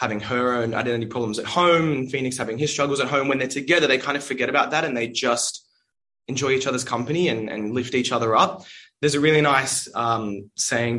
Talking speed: 230 wpm